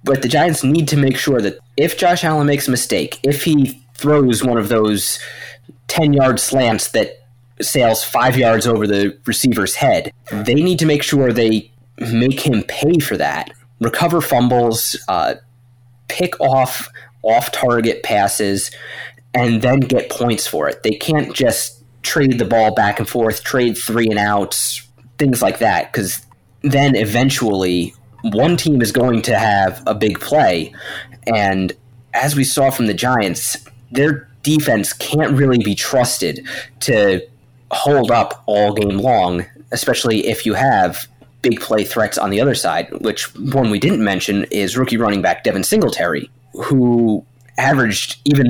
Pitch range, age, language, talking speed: 110-135 Hz, 20-39, English, 155 wpm